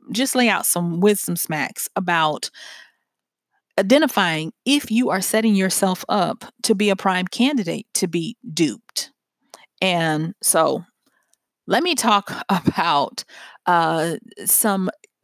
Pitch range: 175-220 Hz